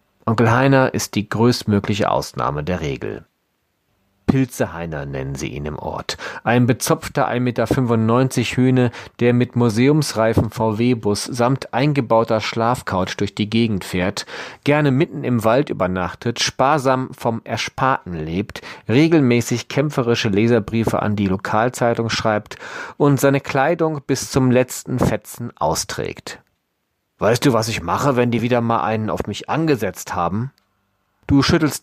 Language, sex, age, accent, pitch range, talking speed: German, male, 40-59, German, 105-135 Hz, 130 wpm